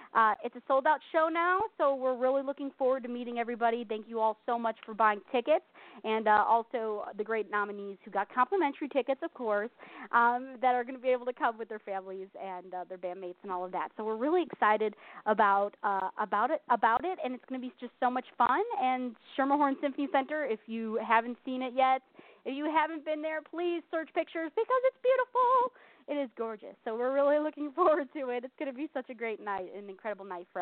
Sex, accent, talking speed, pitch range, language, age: female, American, 230 wpm, 225-330 Hz, English, 30-49